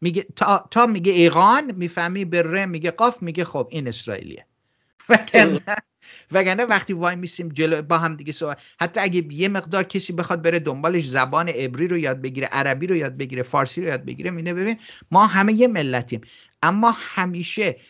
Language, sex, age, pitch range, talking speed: English, male, 50-69, 130-185 Hz, 175 wpm